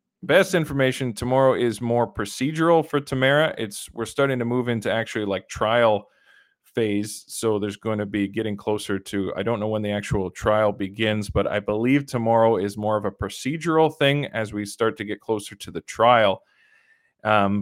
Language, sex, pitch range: English, male, 105-130 Hz